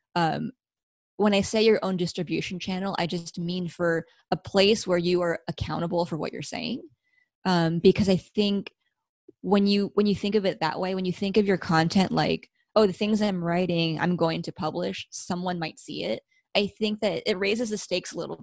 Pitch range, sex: 170-205 Hz, female